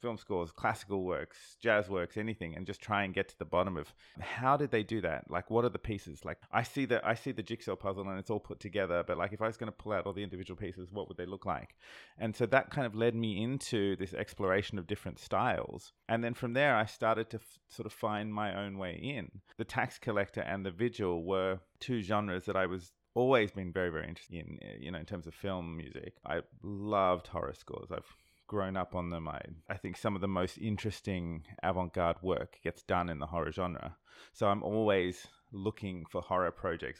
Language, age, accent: English, 30-49, Australian